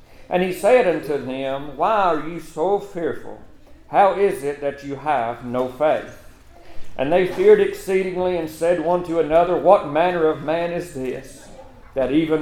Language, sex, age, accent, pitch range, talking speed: English, male, 50-69, American, 145-185 Hz, 170 wpm